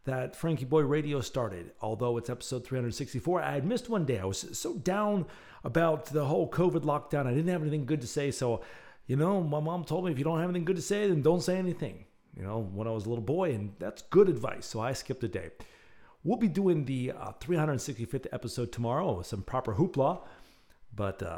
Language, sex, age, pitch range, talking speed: English, male, 40-59, 105-155 Hz, 220 wpm